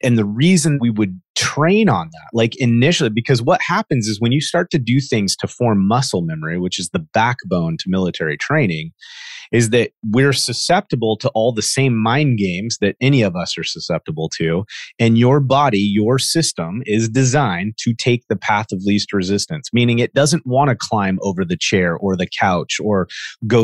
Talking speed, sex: 195 wpm, male